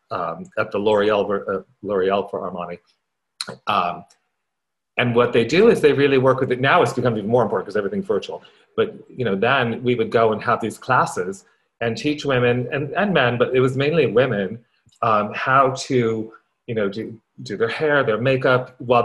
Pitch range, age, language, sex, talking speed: 105-145 Hz, 40-59, English, male, 190 wpm